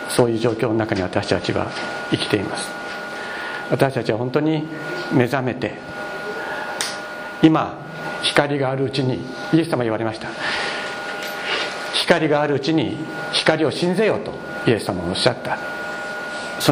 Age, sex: 60-79, male